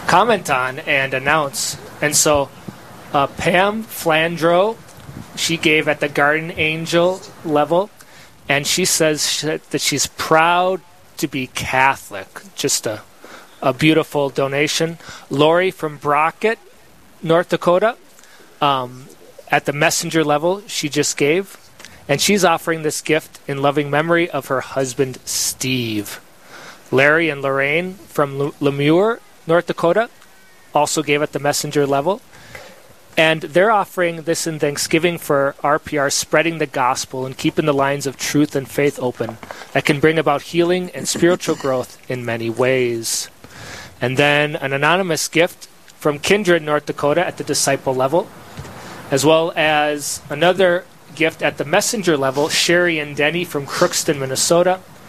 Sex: male